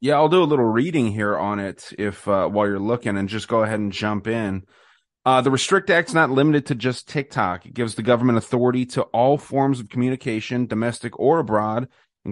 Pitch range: 110-130 Hz